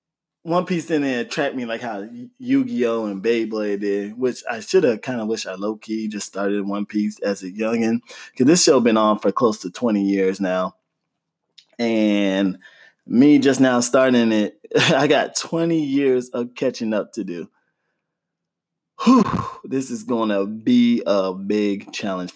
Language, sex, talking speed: English, male, 165 wpm